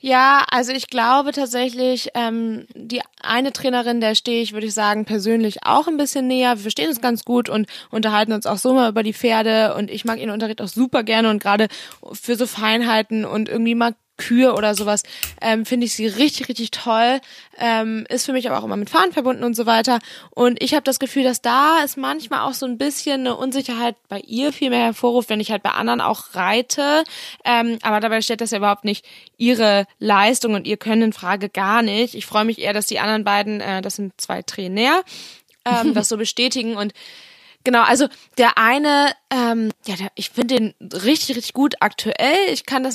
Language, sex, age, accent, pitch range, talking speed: German, female, 20-39, German, 215-255 Hz, 210 wpm